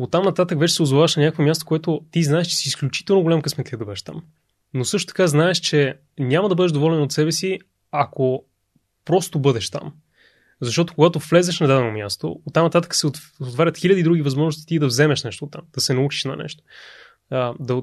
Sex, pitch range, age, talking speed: male, 130-160 Hz, 20-39, 200 wpm